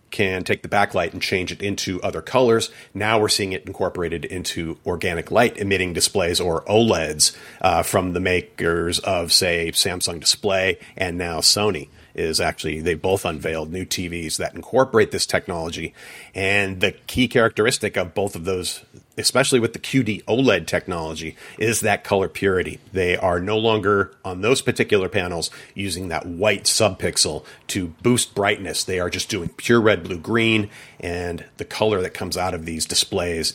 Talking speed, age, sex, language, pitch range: 170 wpm, 40-59, male, English, 95-115 Hz